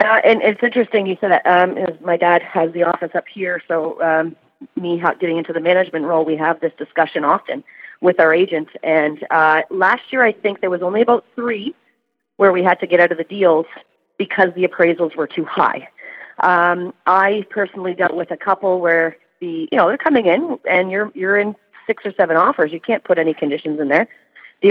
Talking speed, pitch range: 210 wpm, 165-205 Hz